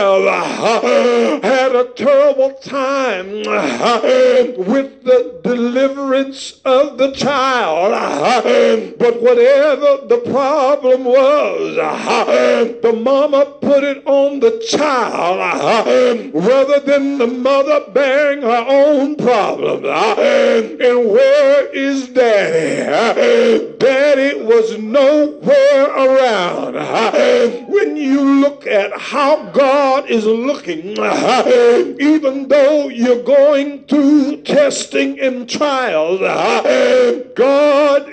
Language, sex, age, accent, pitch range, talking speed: English, male, 60-79, American, 250-290 Hz, 85 wpm